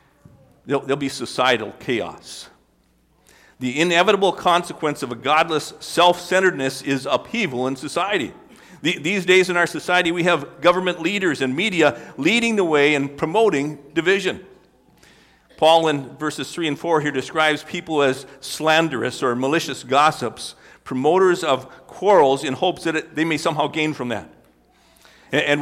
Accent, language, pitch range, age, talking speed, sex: American, English, 135-170 Hz, 50-69, 140 wpm, male